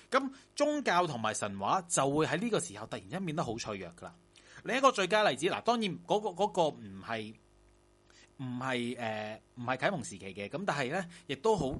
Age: 30-49